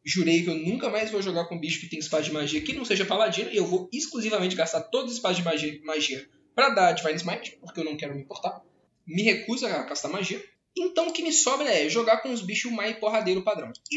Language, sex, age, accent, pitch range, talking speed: Portuguese, male, 20-39, Brazilian, 155-220 Hz, 250 wpm